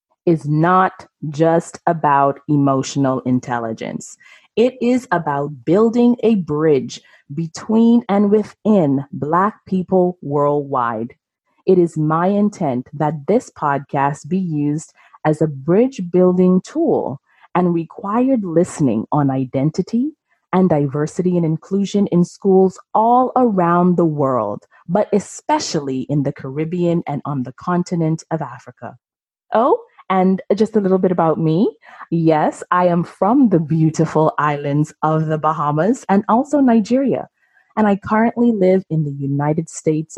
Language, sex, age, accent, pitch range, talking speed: English, female, 30-49, American, 150-205 Hz, 130 wpm